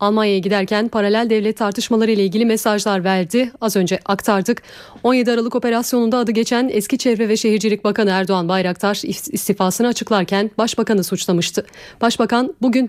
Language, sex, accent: Turkish, female, native